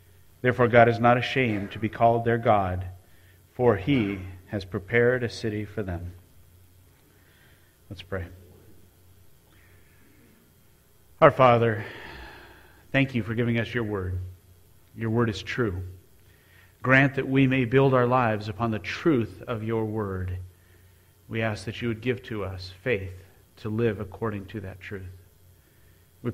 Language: English